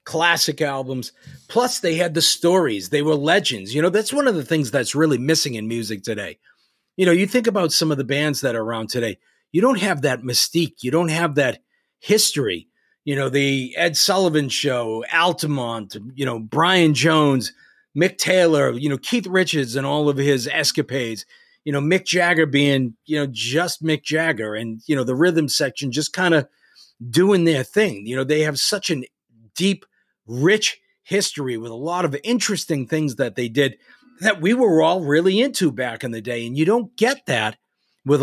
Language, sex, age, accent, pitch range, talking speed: English, male, 40-59, American, 130-170 Hz, 195 wpm